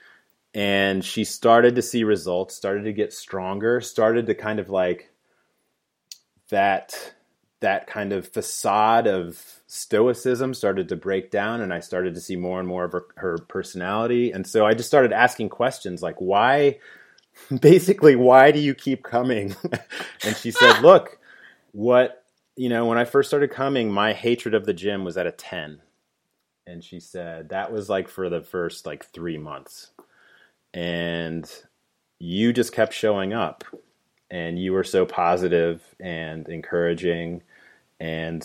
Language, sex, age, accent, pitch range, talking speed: English, male, 30-49, American, 90-120 Hz, 155 wpm